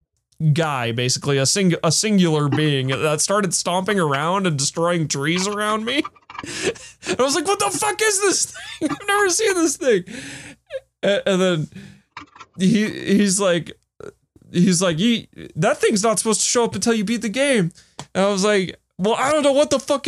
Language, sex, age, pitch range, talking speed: English, male, 20-39, 130-195 Hz, 190 wpm